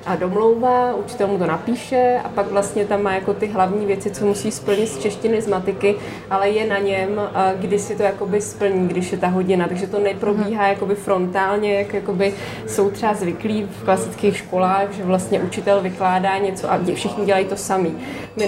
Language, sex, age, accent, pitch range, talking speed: Czech, female, 20-39, native, 195-205 Hz, 190 wpm